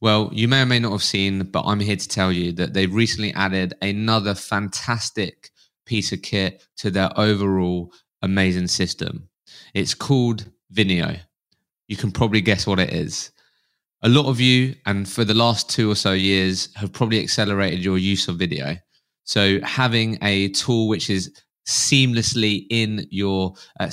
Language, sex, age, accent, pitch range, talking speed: English, male, 20-39, British, 95-115 Hz, 170 wpm